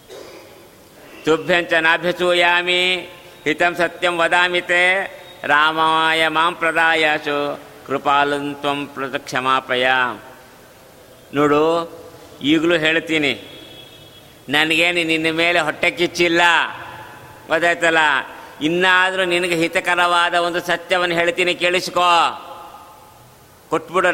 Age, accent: 50-69, native